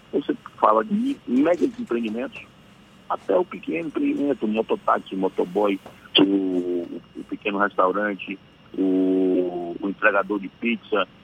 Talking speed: 115 wpm